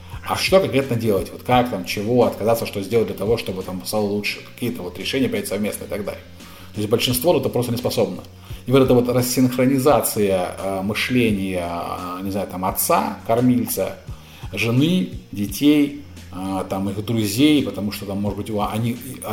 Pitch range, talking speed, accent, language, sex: 95-120 Hz, 180 wpm, native, Russian, male